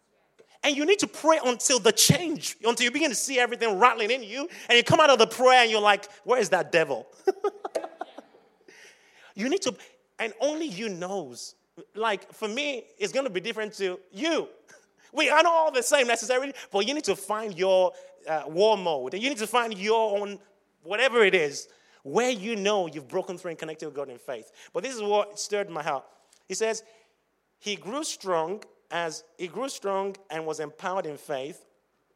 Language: English